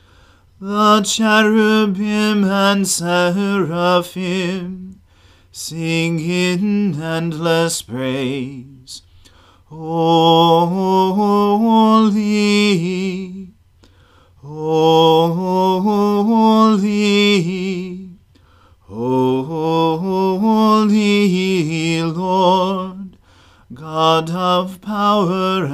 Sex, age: male, 40-59